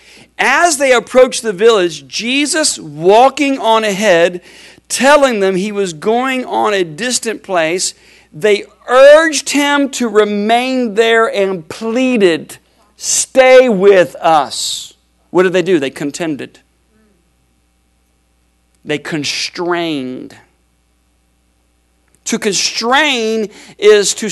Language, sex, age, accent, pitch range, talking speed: English, male, 50-69, American, 135-225 Hz, 100 wpm